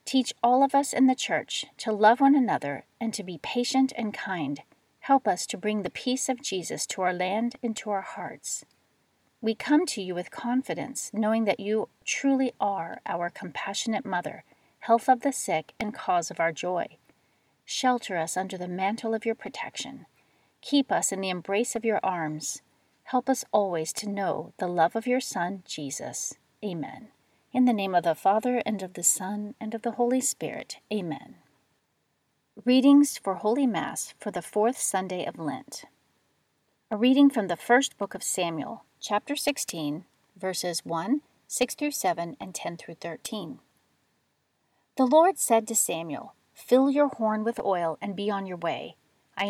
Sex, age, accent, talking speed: female, 40-59, American, 175 wpm